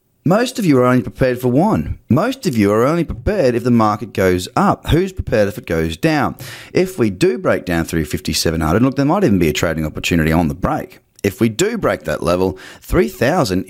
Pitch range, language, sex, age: 100-140 Hz, English, male, 30-49